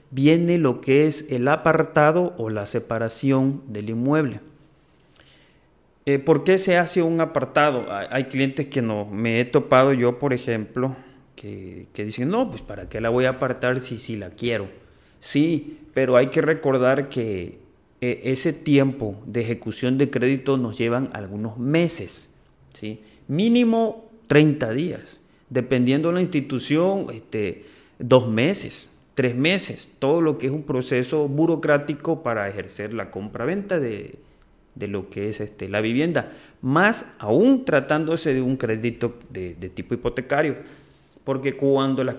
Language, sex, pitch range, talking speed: Spanish, male, 115-150 Hz, 140 wpm